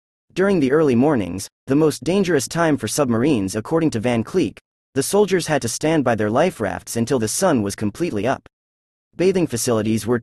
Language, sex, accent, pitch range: English, male, American, 110-160 Hz